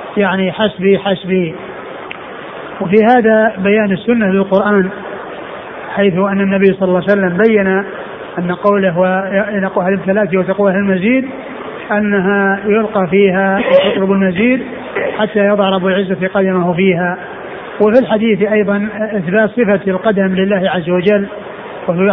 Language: Arabic